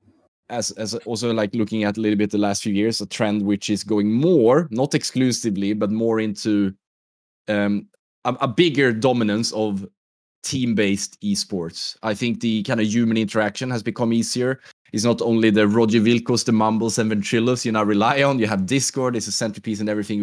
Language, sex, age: English, male, 10-29